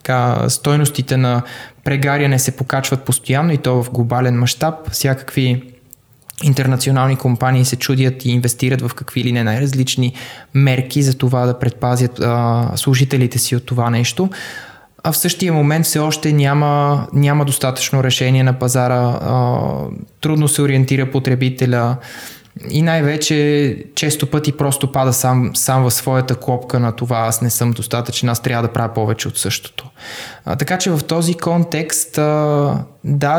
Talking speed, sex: 150 wpm, male